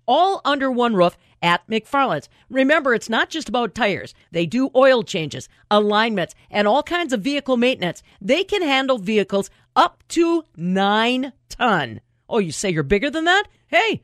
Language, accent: English, American